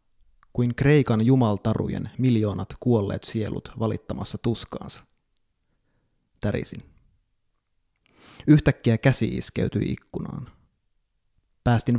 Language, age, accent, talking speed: Finnish, 30-49, native, 70 wpm